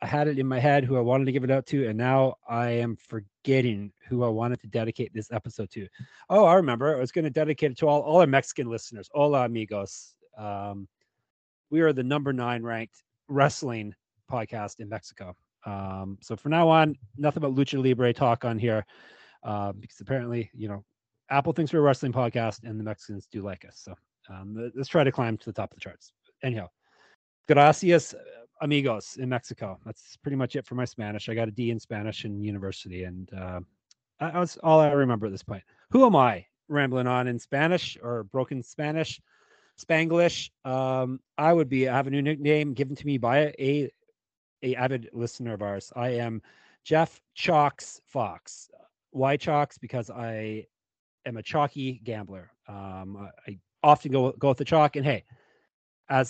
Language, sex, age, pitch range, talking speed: English, male, 30-49, 110-140 Hz, 190 wpm